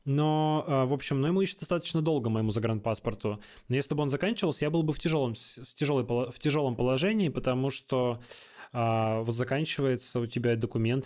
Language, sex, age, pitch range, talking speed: Russian, male, 20-39, 120-140 Hz, 180 wpm